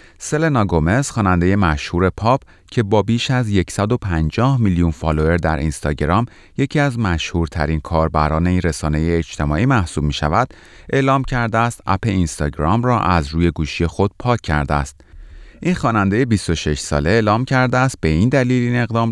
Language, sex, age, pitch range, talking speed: Persian, male, 30-49, 80-115 Hz, 155 wpm